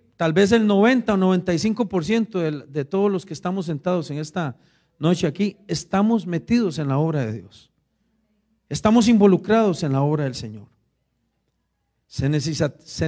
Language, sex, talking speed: Spanish, male, 140 wpm